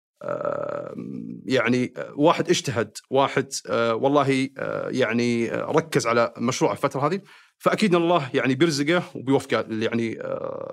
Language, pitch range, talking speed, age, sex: Arabic, 125-165 Hz, 95 wpm, 40-59, male